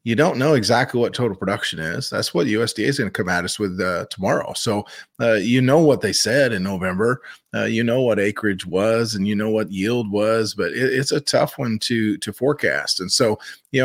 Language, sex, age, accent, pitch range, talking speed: English, male, 30-49, American, 115-150 Hz, 230 wpm